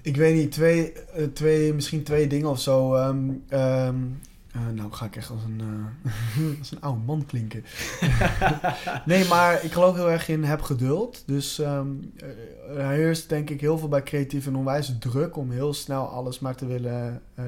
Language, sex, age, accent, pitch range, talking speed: English, male, 20-39, Dutch, 130-150 Hz, 190 wpm